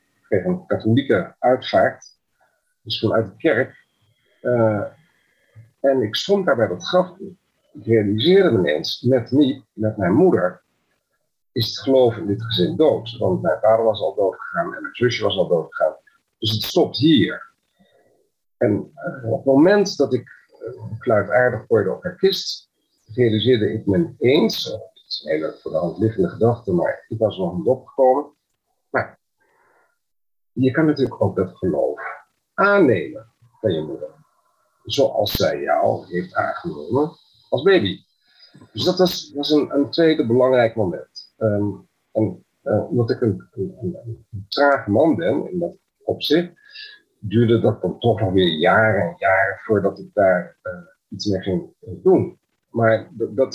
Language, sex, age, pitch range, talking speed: Dutch, male, 50-69, 110-175 Hz, 165 wpm